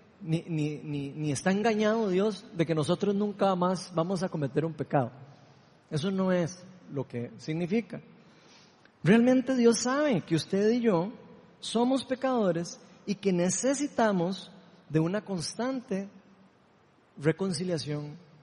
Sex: male